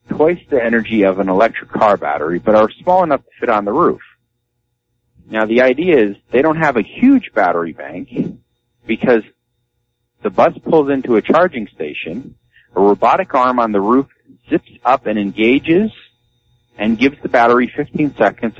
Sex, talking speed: male, 170 wpm